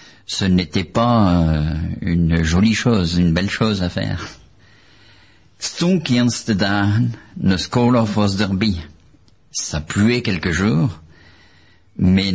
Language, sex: French, male